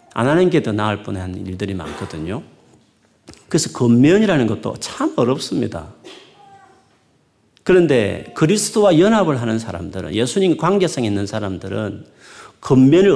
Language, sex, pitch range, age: Korean, male, 105-155 Hz, 40-59